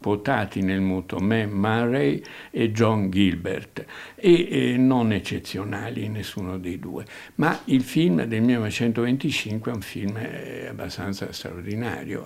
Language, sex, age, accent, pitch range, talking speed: Italian, male, 60-79, native, 95-115 Hz, 115 wpm